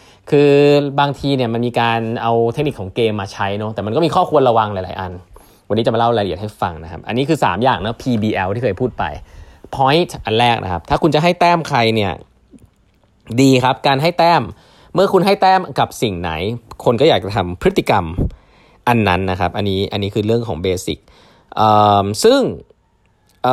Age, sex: 20-39, male